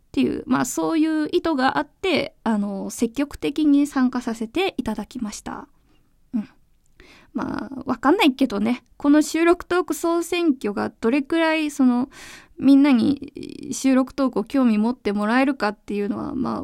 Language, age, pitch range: Japanese, 20-39, 230-305 Hz